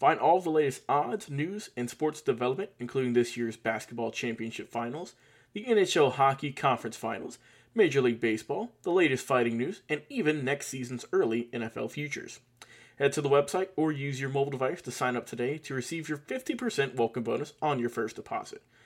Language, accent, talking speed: English, American, 180 wpm